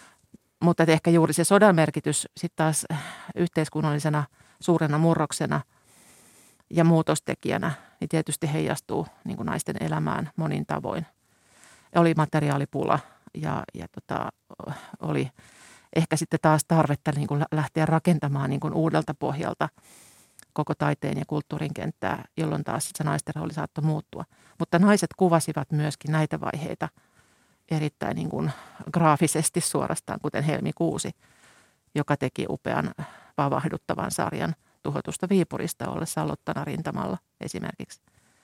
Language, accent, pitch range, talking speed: Finnish, native, 150-170 Hz, 120 wpm